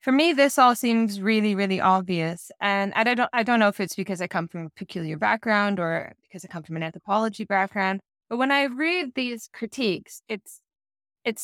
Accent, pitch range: American, 190-245 Hz